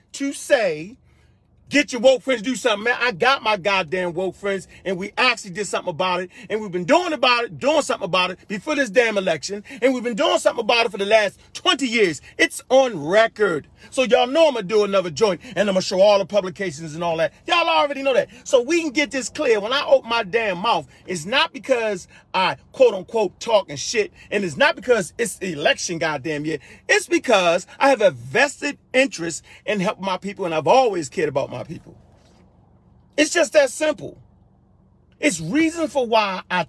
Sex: male